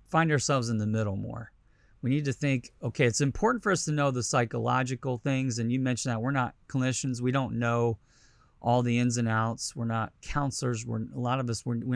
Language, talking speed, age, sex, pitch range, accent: English, 220 wpm, 30-49, male, 110-140 Hz, American